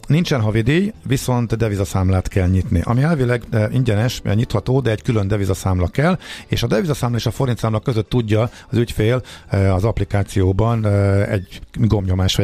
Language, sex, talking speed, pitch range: Hungarian, male, 145 wpm, 90-115 Hz